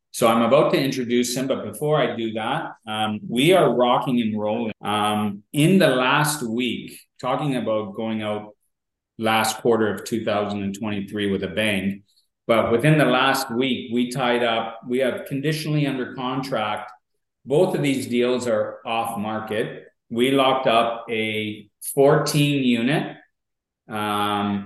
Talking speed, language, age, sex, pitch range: 145 wpm, English, 40-59, male, 105-125 Hz